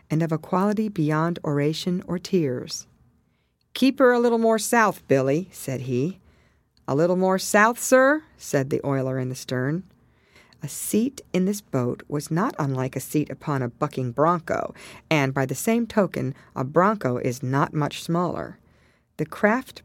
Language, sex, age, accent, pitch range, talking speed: English, female, 50-69, American, 140-190 Hz, 165 wpm